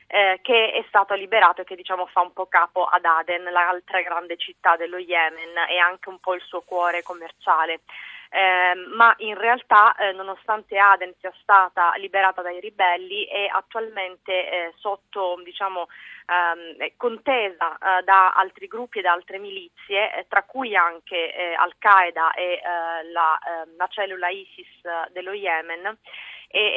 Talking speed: 155 wpm